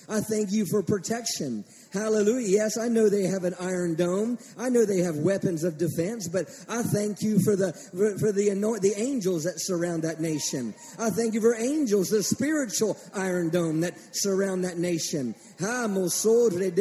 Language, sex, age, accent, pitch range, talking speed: English, male, 40-59, American, 205-255 Hz, 170 wpm